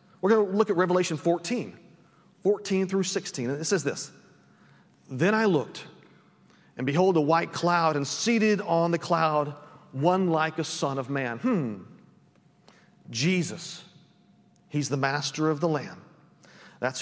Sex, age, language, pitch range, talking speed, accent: male, 40-59, English, 150-190 Hz, 150 wpm, American